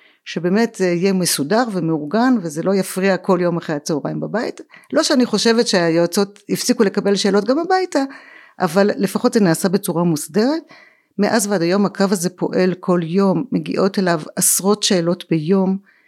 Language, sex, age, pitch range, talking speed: Hebrew, female, 50-69, 170-235 Hz, 155 wpm